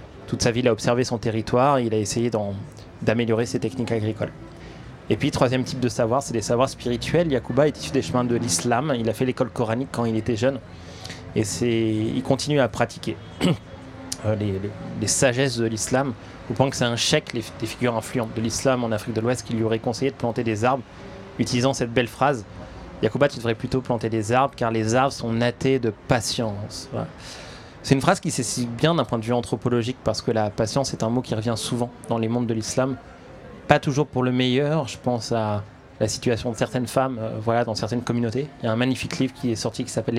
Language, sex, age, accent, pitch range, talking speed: French, male, 20-39, French, 115-130 Hz, 225 wpm